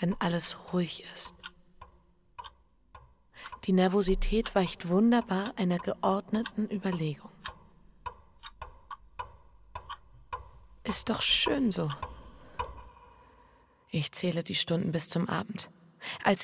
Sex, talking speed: female, 85 wpm